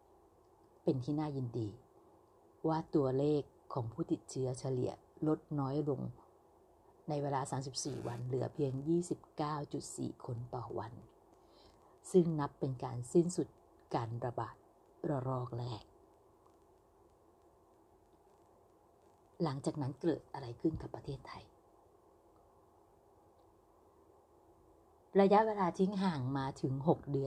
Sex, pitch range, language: female, 125-170 Hz, Thai